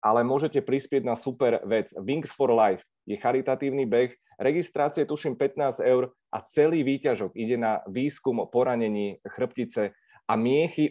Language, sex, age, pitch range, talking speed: Czech, male, 30-49, 120-150 Hz, 145 wpm